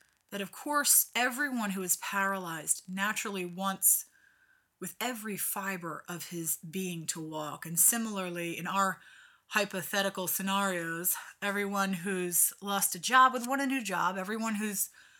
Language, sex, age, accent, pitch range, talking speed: English, female, 30-49, American, 170-210 Hz, 140 wpm